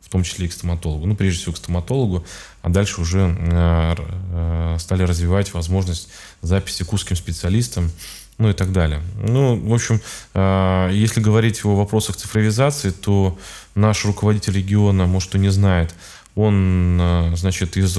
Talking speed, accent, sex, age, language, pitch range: 145 wpm, native, male, 20-39, Russian, 85-100 Hz